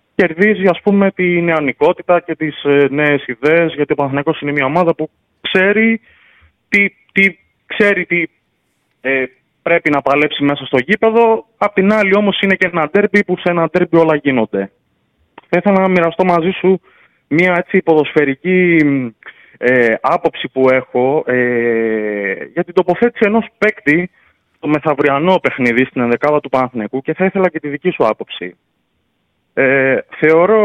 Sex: male